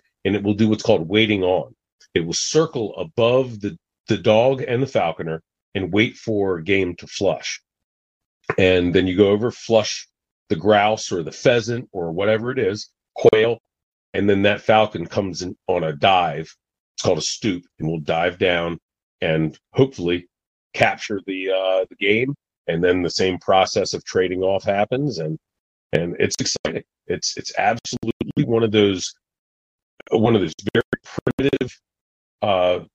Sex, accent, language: male, American, English